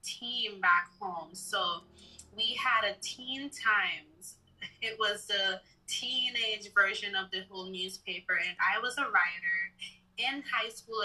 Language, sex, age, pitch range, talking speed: English, female, 20-39, 190-240 Hz, 140 wpm